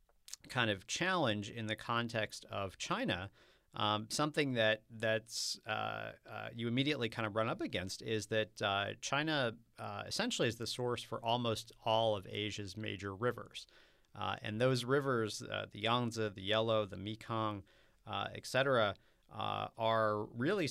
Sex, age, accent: male, 40-59, American